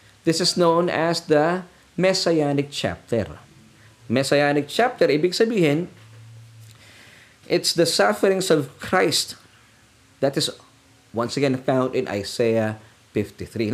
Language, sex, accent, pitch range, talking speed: Filipino, male, native, 115-155 Hz, 105 wpm